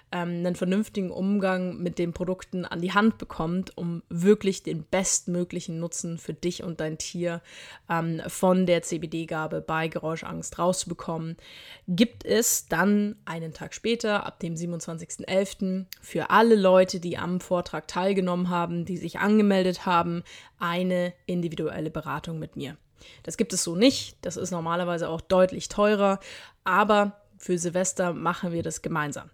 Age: 20-39